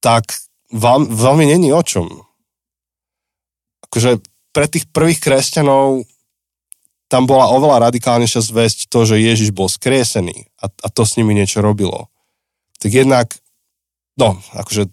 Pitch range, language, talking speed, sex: 100-120 Hz, Slovak, 130 wpm, male